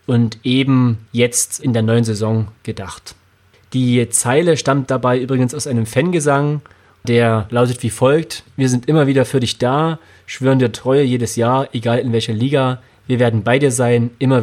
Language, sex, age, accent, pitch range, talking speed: German, male, 30-49, German, 115-140 Hz, 175 wpm